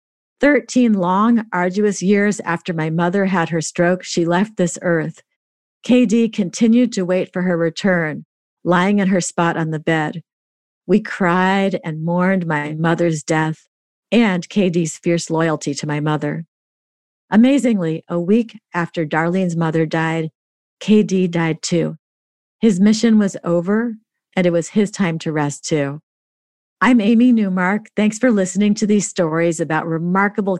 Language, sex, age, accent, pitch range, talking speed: English, female, 50-69, American, 165-210 Hz, 145 wpm